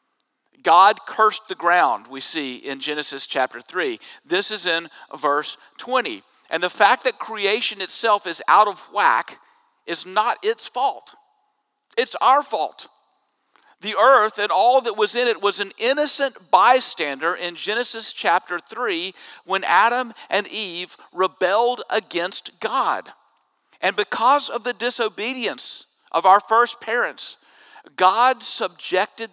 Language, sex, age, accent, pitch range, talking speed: English, male, 50-69, American, 185-255 Hz, 135 wpm